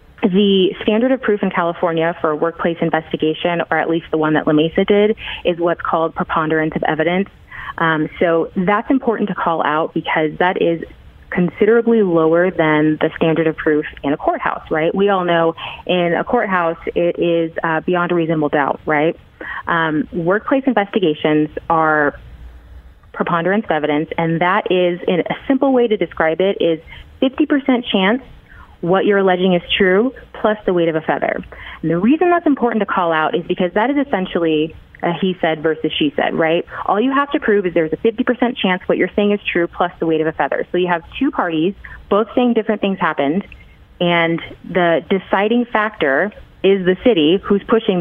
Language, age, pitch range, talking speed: English, 20-39, 165-210 Hz, 185 wpm